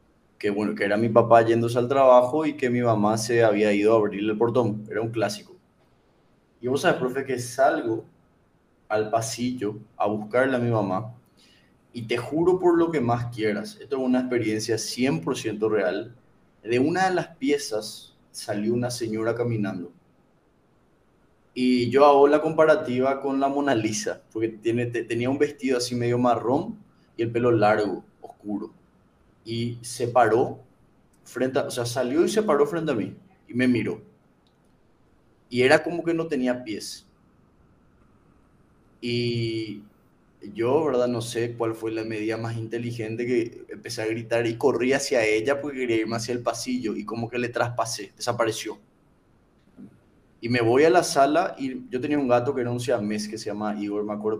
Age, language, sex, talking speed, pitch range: 20-39, English, male, 175 wpm, 110-125 Hz